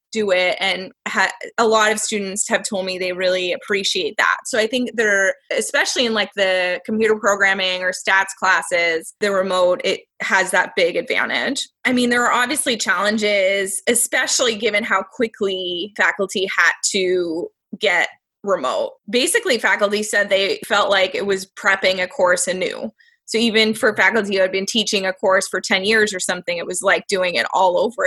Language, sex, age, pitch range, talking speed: English, female, 20-39, 190-230 Hz, 175 wpm